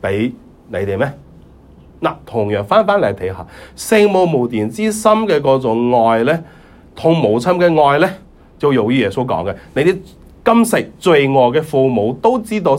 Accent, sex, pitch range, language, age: native, male, 90-145 Hz, Chinese, 30-49